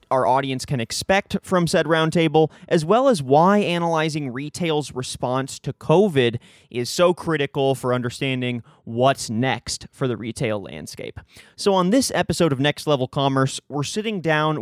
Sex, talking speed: male, 155 wpm